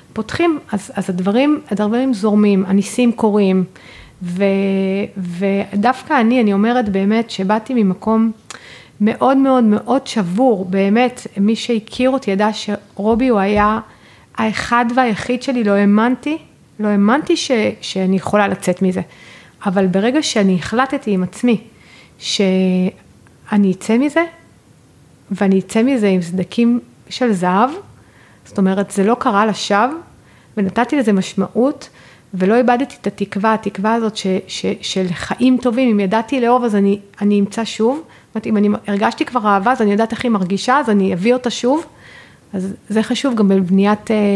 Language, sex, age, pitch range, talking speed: Hebrew, female, 40-59, 195-240 Hz, 140 wpm